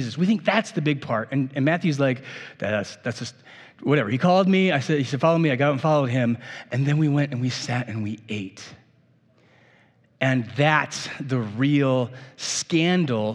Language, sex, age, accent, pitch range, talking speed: English, male, 30-49, American, 140-180 Hz, 200 wpm